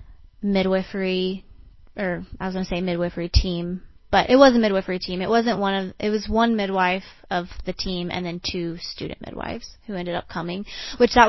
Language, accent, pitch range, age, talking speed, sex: English, American, 180-215 Hz, 20-39, 190 wpm, female